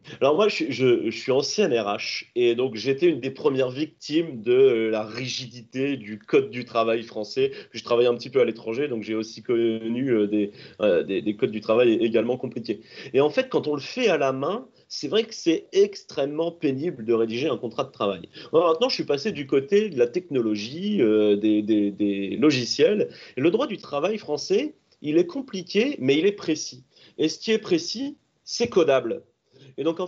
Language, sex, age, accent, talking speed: French, male, 30-49, French, 210 wpm